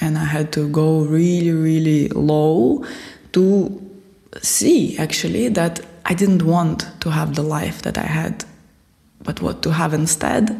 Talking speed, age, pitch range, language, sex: 155 wpm, 20-39, 160-195 Hz, English, female